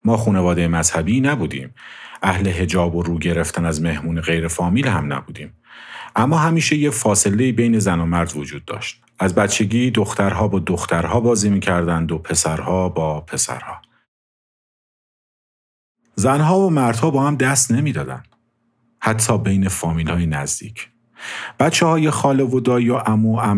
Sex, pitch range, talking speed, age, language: male, 85-120 Hz, 145 wpm, 50-69, Persian